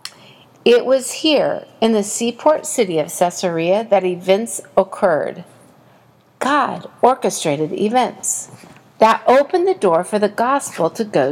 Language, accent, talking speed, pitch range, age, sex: English, American, 125 wpm, 190-275 Hz, 50-69, female